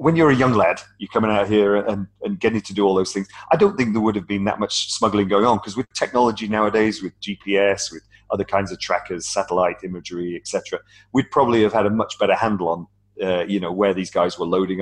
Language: English